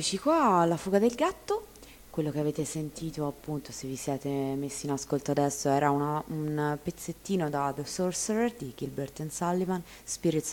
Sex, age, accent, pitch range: female, 20-39, native, 140-170 Hz